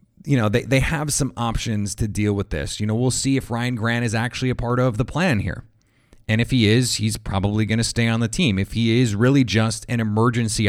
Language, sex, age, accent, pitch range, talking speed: English, male, 30-49, American, 110-130 Hz, 255 wpm